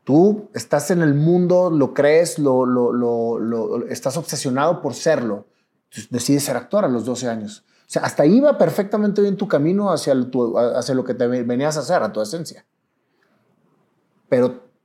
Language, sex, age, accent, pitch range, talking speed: Spanish, male, 30-49, Mexican, 125-175 Hz, 180 wpm